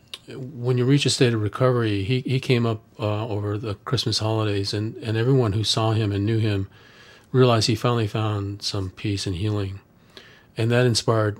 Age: 40-59